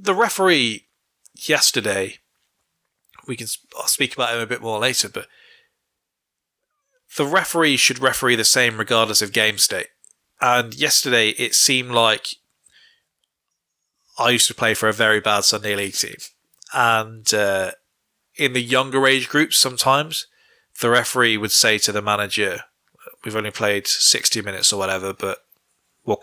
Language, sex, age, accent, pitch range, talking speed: English, male, 20-39, British, 110-145 Hz, 145 wpm